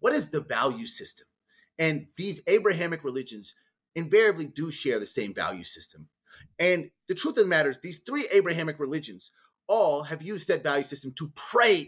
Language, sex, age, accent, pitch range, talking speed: English, male, 30-49, American, 140-195 Hz, 175 wpm